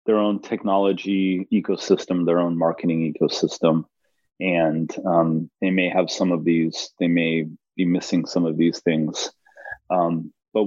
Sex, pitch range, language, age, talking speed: male, 85-100 Hz, English, 30-49, 145 wpm